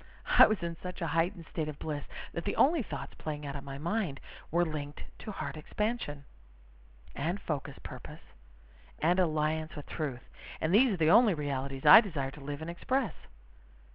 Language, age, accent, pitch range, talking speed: English, 50-69, American, 105-175 Hz, 180 wpm